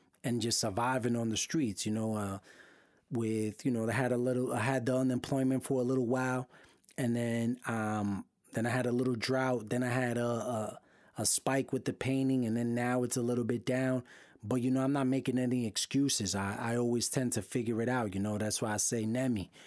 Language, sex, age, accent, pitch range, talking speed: English, male, 30-49, American, 110-130 Hz, 225 wpm